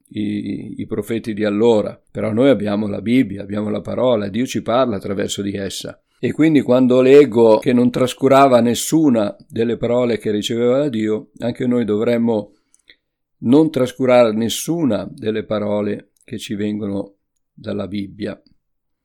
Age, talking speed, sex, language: 50-69, 145 wpm, male, Italian